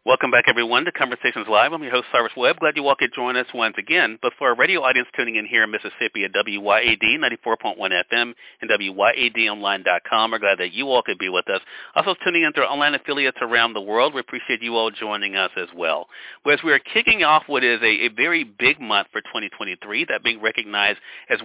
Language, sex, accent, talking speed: English, male, American, 220 wpm